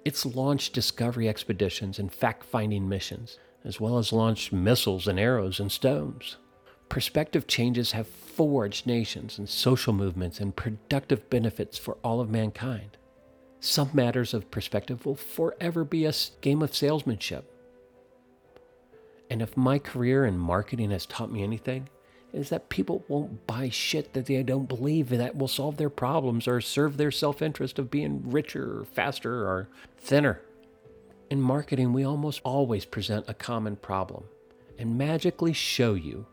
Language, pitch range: English, 100-140 Hz